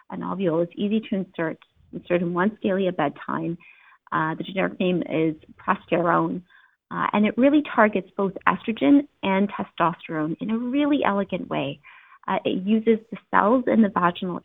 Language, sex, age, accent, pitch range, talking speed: English, female, 30-49, American, 175-235 Hz, 160 wpm